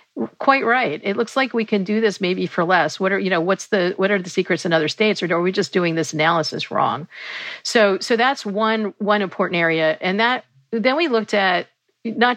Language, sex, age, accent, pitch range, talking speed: English, female, 50-69, American, 170-215 Hz, 230 wpm